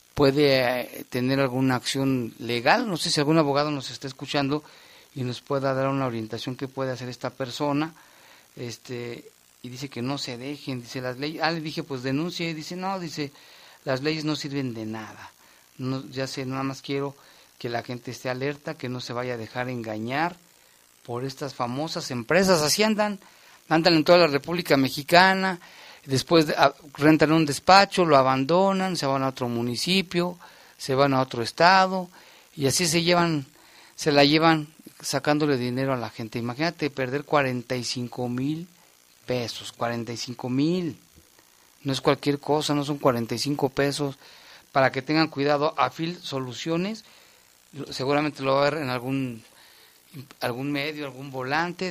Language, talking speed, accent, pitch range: Spanish, 160 wpm, Mexican, 130-155 Hz